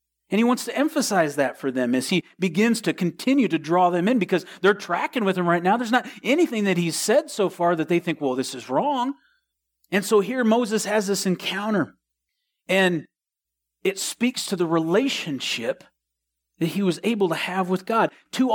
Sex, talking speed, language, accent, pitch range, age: male, 195 wpm, English, American, 165-235 Hz, 40-59